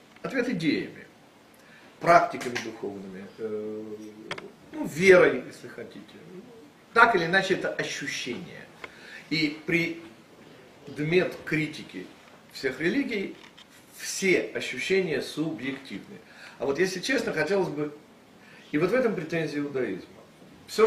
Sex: male